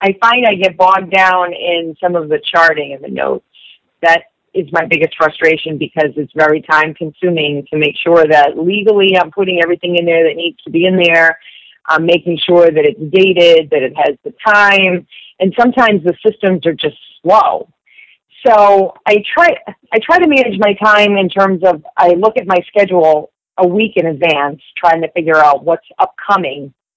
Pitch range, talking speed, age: 160-195 Hz, 190 wpm, 40-59